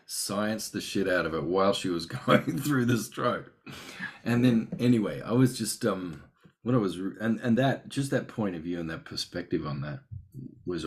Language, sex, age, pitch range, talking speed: English, male, 40-59, 80-95 Hz, 205 wpm